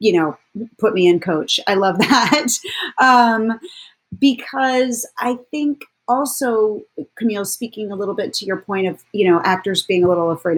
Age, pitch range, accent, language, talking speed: 30-49, 180-255 Hz, American, English, 170 wpm